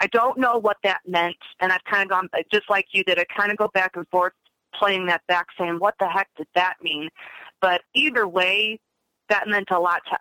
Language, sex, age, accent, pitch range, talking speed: English, female, 30-49, American, 185-240 Hz, 235 wpm